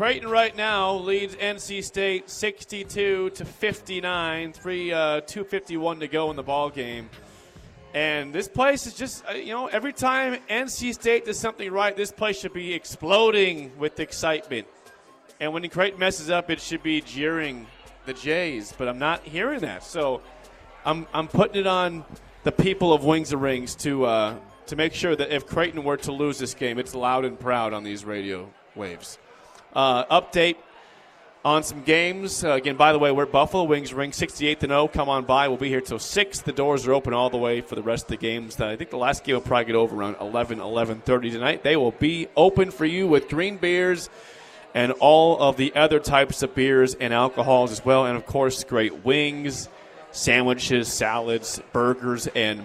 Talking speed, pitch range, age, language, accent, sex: 195 wpm, 130-180 Hz, 30-49, English, American, male